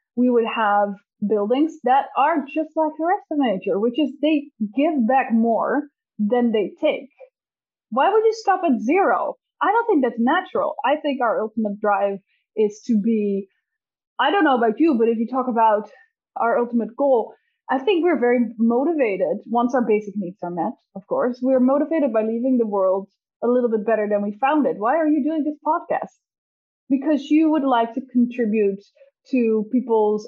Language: English